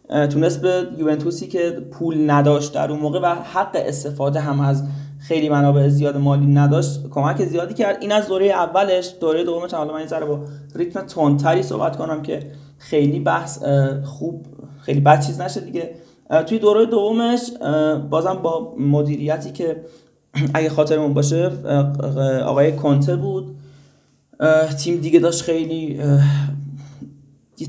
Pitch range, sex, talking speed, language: 140-165 Hz, male, 135 wpm, Persian